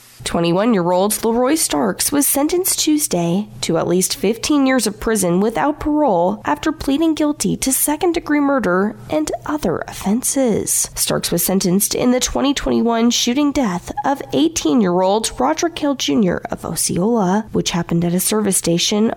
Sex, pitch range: female, 185-285 Hz